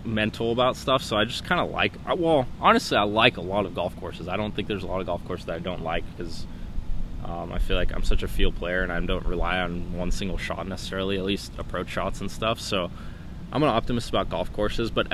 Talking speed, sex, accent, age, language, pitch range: 255 wpm, male, American, 20-39, English, 85-105 Hz